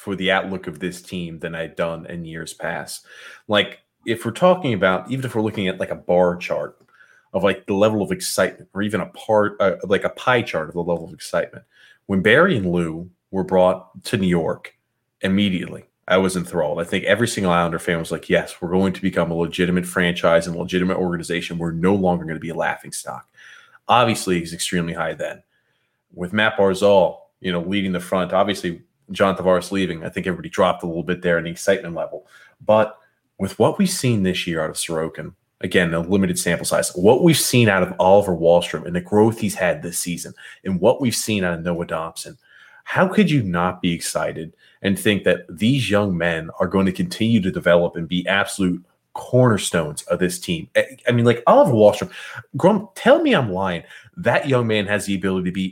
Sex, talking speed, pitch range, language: male, 210 wpm, 85-105 Hz, English